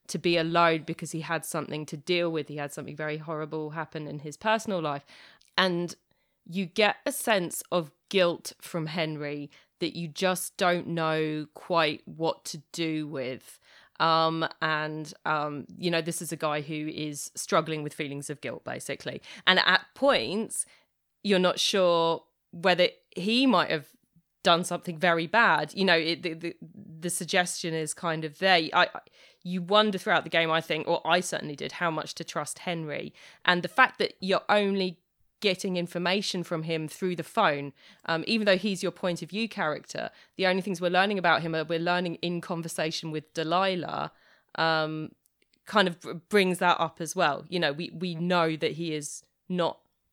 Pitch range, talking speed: 155-180 Hz, 180 wpm